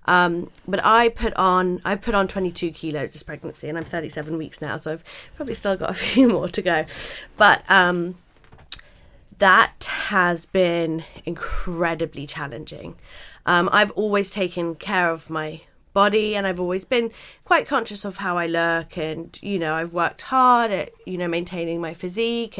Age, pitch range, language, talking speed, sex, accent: 20-39, 170-210 Hz, English, 170 wpm, female, British